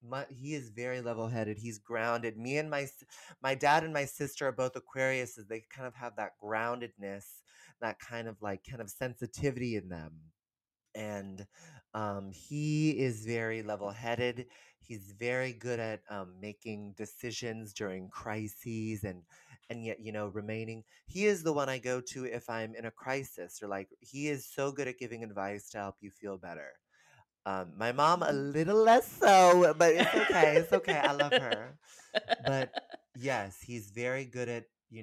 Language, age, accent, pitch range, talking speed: English, 30-49, American, 100-130 Hz, 175 wpm